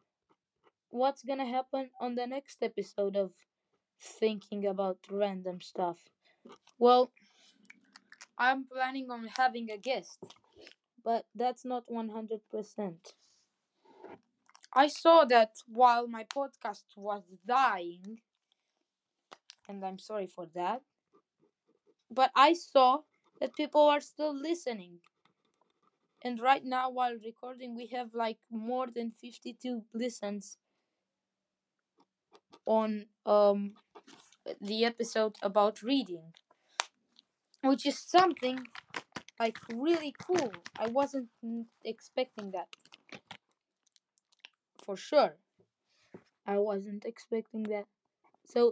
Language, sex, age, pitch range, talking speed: Romanian, female, 20-39, 210-260 Hz, 95 wpm